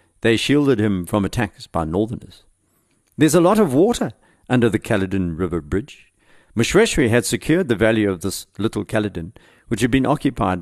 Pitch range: 95-125 Hz